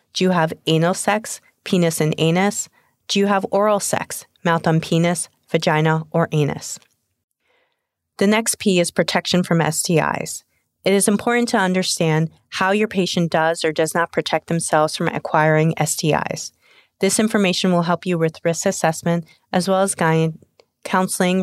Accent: American